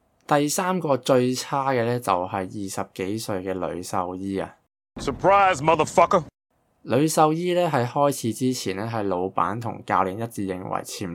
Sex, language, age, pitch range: male, Chinese, 20-39, 95-125 Hz